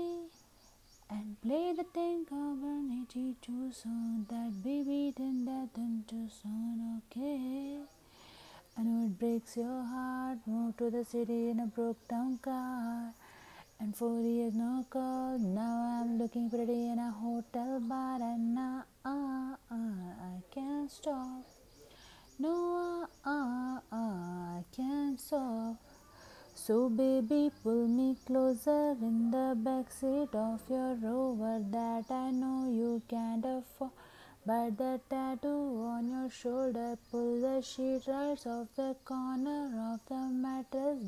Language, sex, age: Hindi, female, 30-49